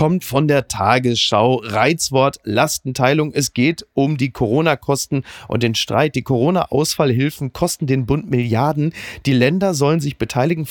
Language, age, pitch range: German, 40-59, 120-155 Hz